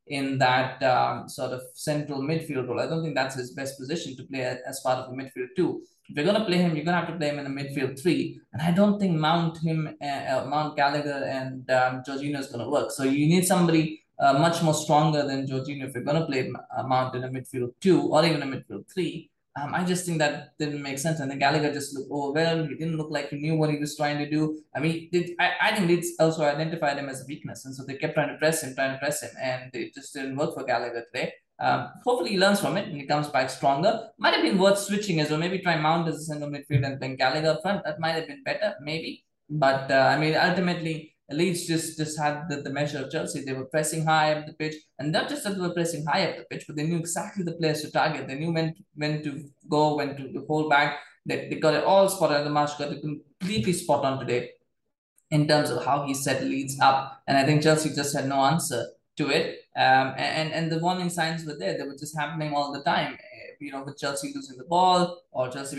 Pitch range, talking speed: 135-160 Hz, 260 wpm